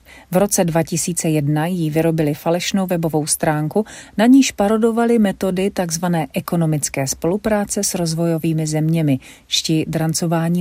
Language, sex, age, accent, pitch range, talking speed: Czech, female, 40-59, native, 160-210 Hz, 115 wpm